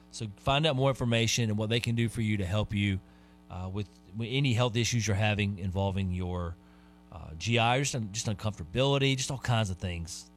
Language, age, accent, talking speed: English, 30-49, American, 210 wpm